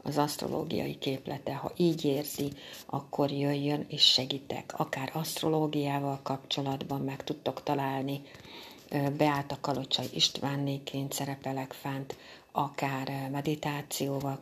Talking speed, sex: 100 wpm, female